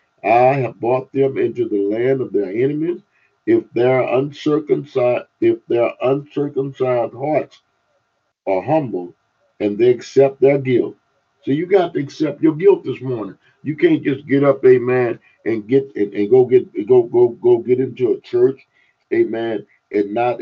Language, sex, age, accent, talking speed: English, male, 50-69, American, 155 wpm